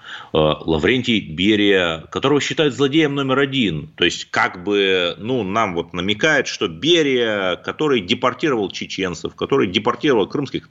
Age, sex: 30-49, male